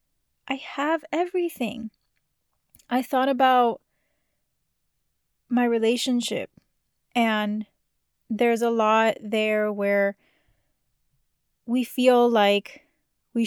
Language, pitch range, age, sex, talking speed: English, 210-255 Hz, 20-39, female, 80 wpm